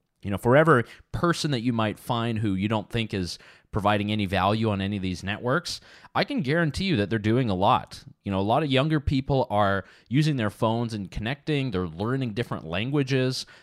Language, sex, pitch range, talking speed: English, male, 95-120 Hz, 210 wpm